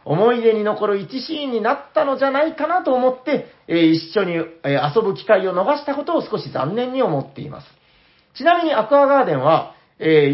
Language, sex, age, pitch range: Japanese, male, 40-59, 155-260 Hz